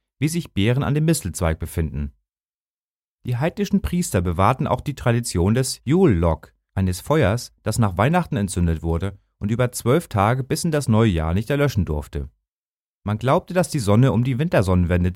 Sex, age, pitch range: male, 30-49, 90-140 Hz